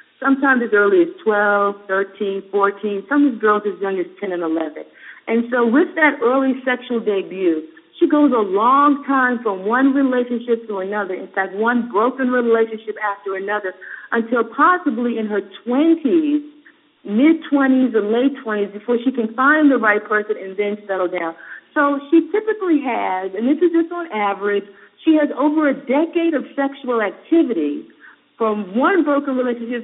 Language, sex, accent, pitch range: English, female, American, 205-285 Hz